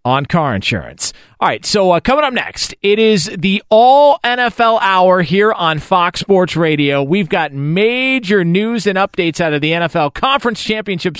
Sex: male